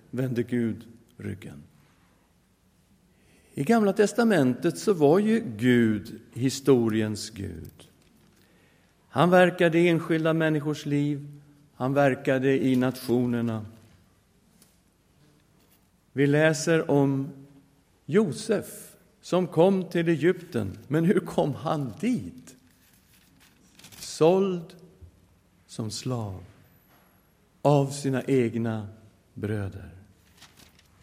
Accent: Swedish